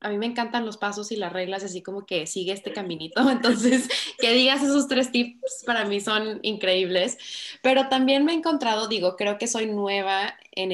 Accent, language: Mexican, Spanish